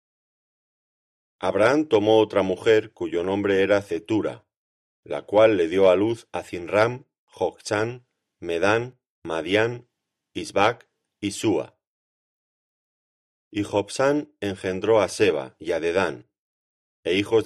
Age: 40-59